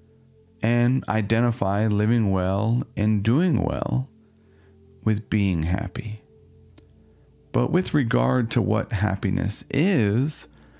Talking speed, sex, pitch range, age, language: 95 wpm, male, 95-120 Hz, 40-59, English